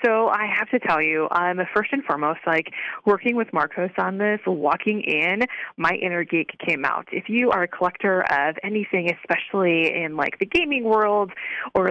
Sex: female